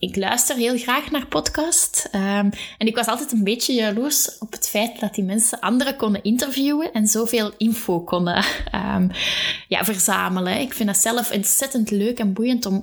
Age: 20-39